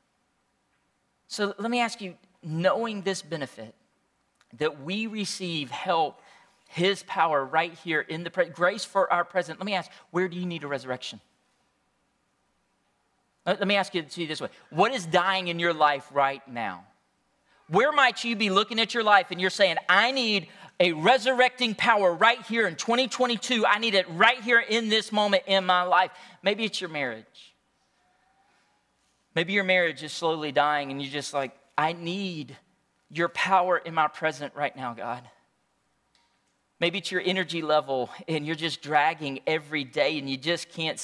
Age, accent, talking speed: 40-59, American, 170 wpm